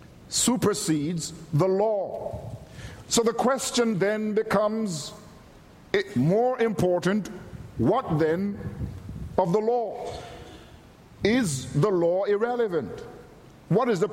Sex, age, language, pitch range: male, 50-69, English, 175-220 Hz